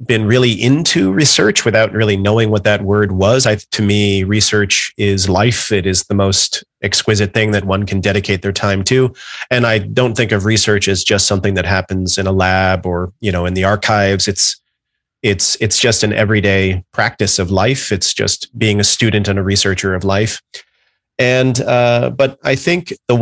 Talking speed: 195 wpm